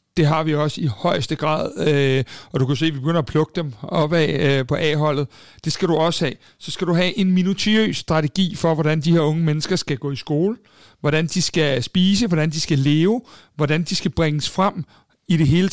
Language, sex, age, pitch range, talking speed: Danish, male, 60-79, 150-180 Hz, 220 wpm